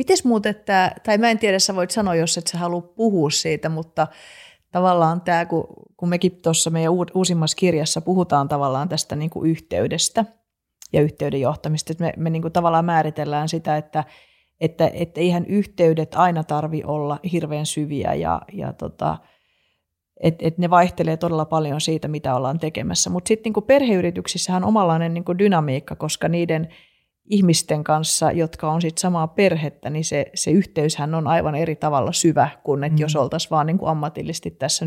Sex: female